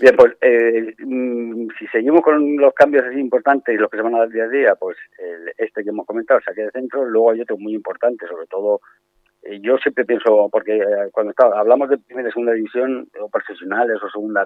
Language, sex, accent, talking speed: Spanish, male, Spanish, 230 wpm